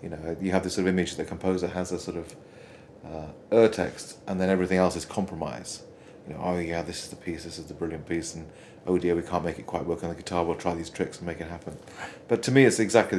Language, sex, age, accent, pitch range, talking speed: English, male, 30-49, British, 90-100 Hz, 280 wpm